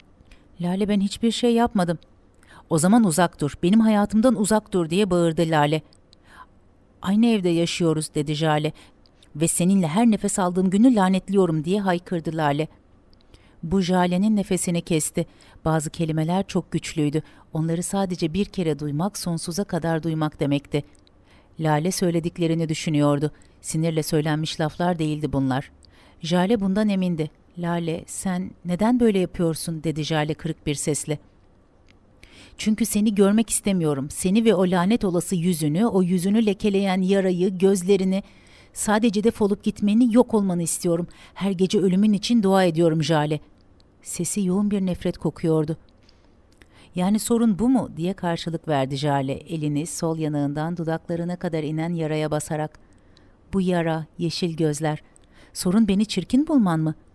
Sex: female